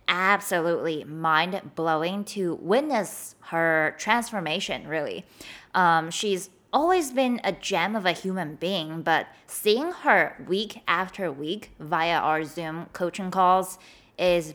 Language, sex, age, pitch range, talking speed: English, female, 20-39, 165-205 Hz, 120 wpm